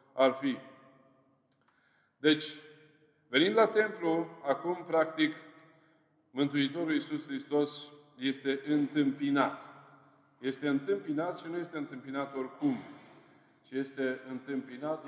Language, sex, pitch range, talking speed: Romanian, male, 125-155 Hz, 90 wpm